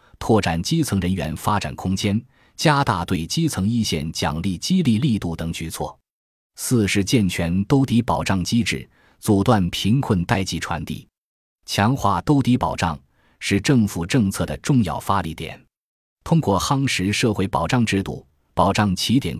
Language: Chinese